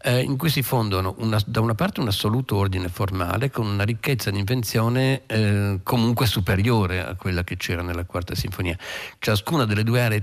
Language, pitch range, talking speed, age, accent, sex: Italian, 100-125 Hz, 175 wpm, 50-69, native, male